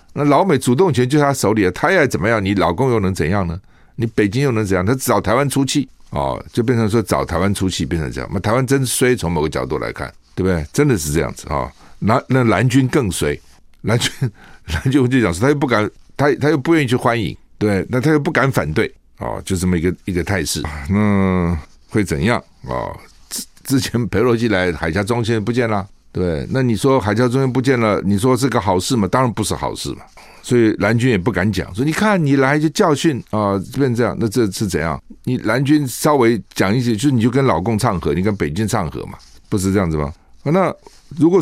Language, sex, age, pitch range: Chinese, male, 50-69, 95-135 Hz